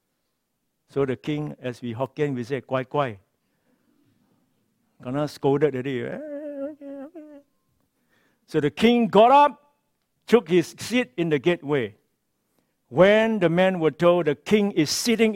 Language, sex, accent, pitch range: English, male, Malaysian, 120-155 Hz